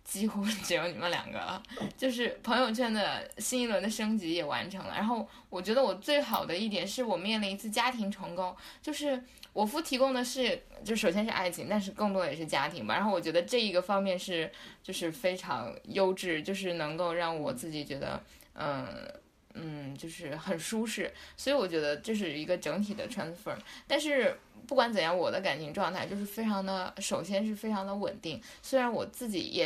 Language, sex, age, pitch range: Chinese, female, 10-29, 175-235 Hz